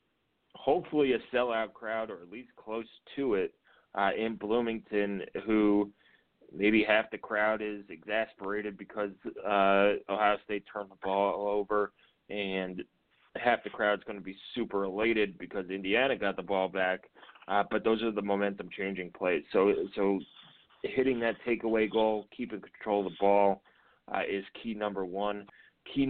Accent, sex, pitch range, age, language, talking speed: American, male, 100-110 Hz, 30-49, English, 160 wpm